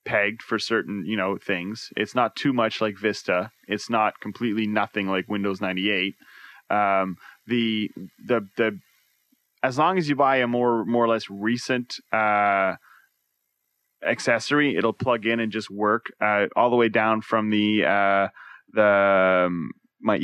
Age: 20-39